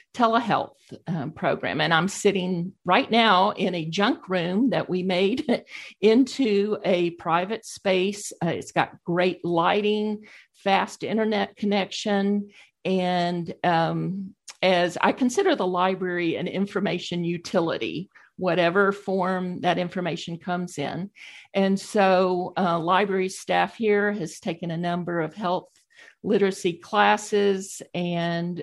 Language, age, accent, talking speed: English, 50-69, American, 120 wpm